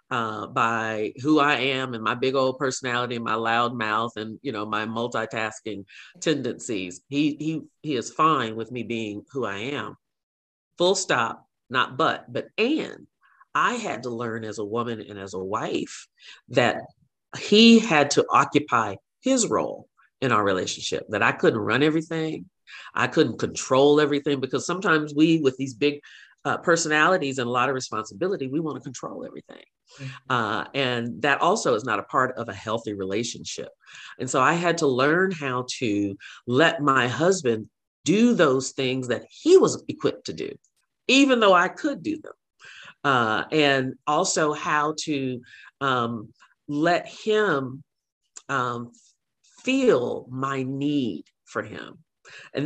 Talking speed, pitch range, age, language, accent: 155 wpm, 115-155 Hz, 40-59, English, American